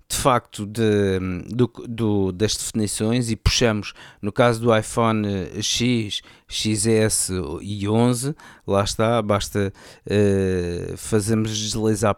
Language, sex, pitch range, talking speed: Portuguese, male, 105-125 Hz, 95 wpm